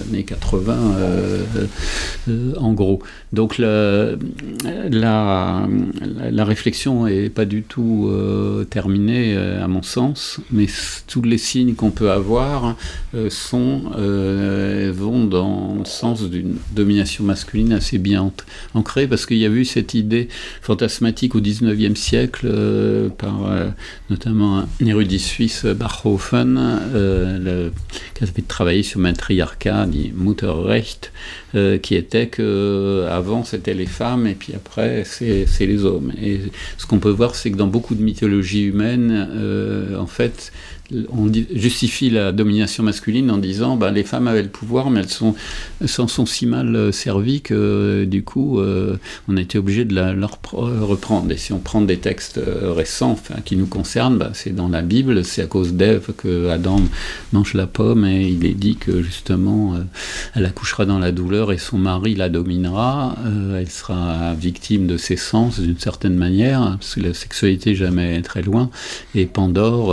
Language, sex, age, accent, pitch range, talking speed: English, male, 50-69, French, 95-110 Hz, 170 wpm